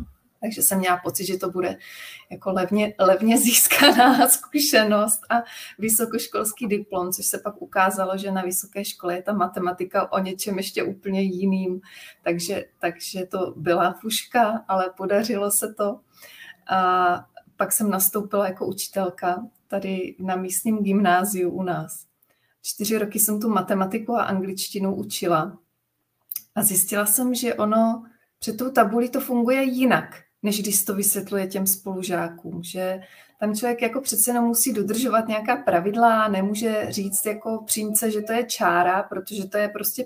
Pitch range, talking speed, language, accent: 185-220 Hz, 150 wpm, Czech, native